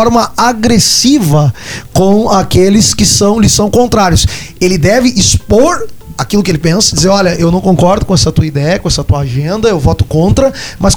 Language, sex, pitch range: Portuguese, male, 160-210 Hz